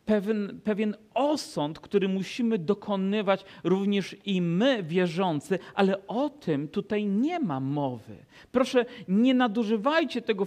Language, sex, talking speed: Polish, male, 120 wpm